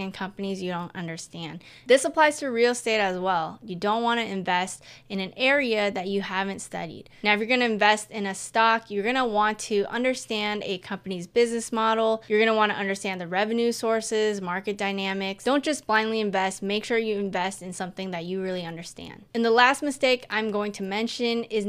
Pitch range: 190-225 Hz